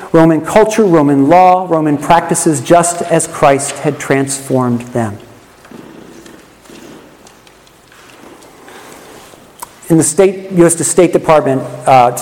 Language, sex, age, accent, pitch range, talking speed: English, male, 50-69, American, 150-200 Hz, 90 wpm